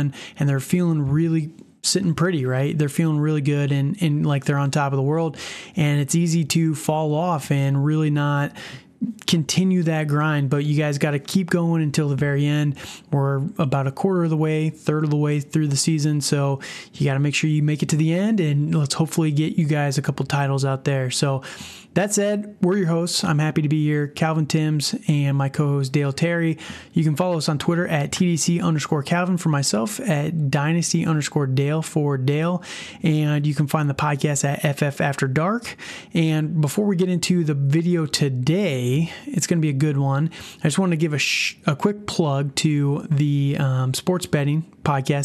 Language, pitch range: English, 145-170 Hz